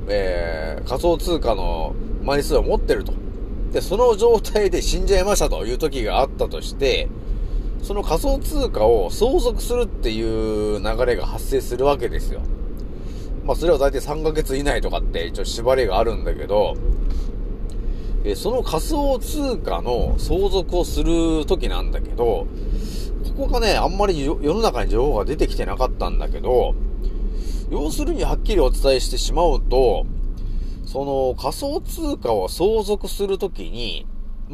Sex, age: male, 30-49